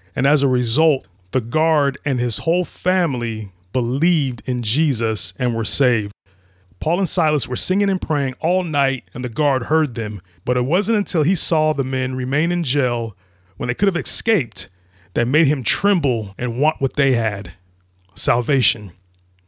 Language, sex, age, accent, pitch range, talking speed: English, male, 30-49, American, 105-155 Hz, 175 wpm